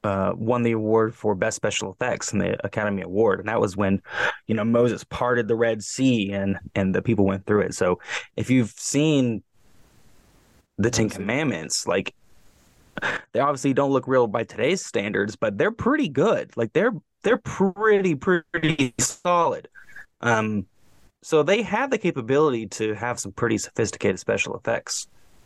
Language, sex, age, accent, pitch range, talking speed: English, male, 20-39, American, 110-130 Hz, 165 wpm